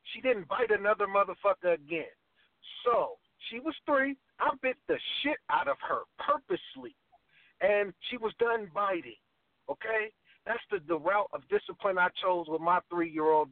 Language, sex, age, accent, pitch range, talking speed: English, male, 50-69, American, 170-245 Hz, 155 wpm